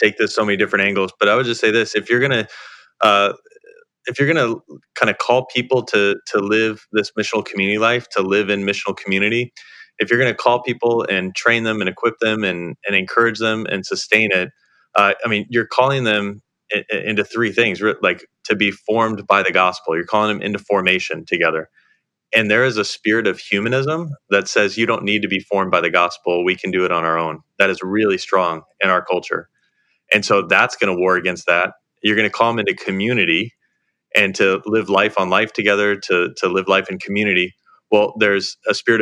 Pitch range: 95-110 Hz